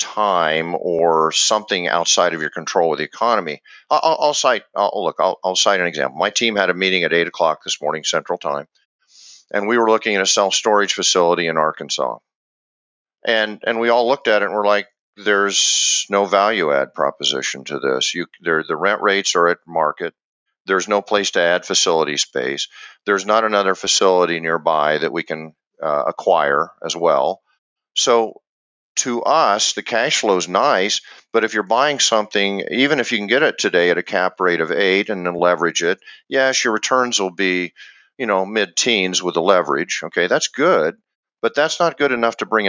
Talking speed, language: 195 wpm, English